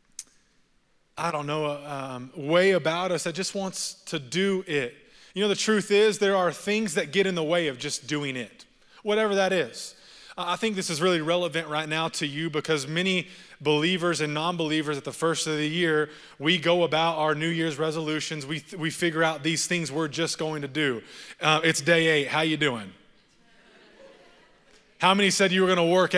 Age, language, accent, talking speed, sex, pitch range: 20-39, English, American, 200 wpm, male, 155-195 Hz